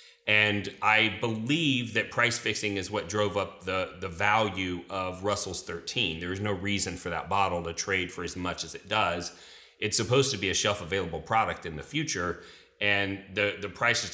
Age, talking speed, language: 30-49, 200 wpm, English